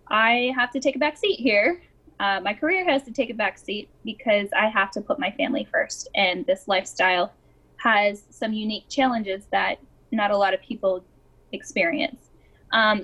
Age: 10-29